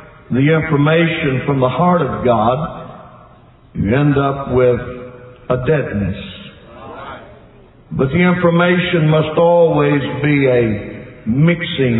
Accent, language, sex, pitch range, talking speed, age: American, English, male, 125-160 Hz, 105 wpm, 60-79